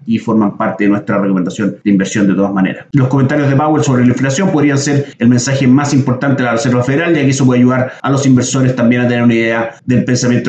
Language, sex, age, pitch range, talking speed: Spanish, male, 30-49, 120-140 Hz, 245 wpm